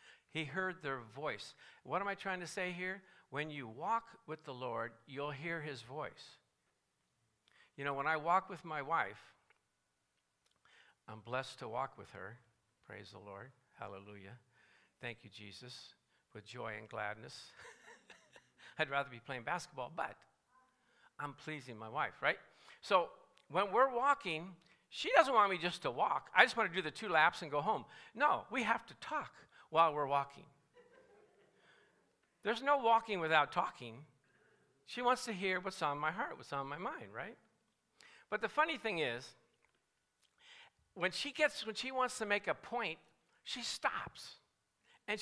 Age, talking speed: 60-79, 165 wpm